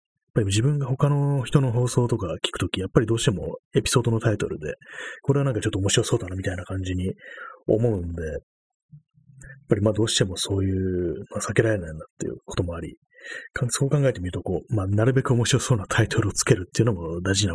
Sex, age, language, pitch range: male, 30-49, Japanese, 95-130 Hz